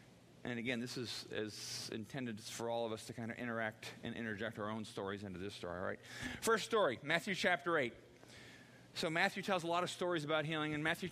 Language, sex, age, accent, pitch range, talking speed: English, male, 40-59, American, 115-150 Hz, 215 wpm